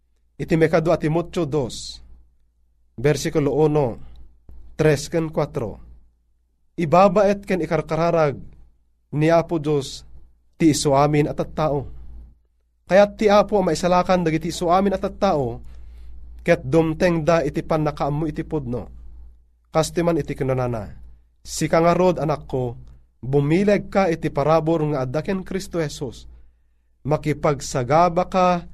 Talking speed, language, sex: 110 wpm, Filipino, male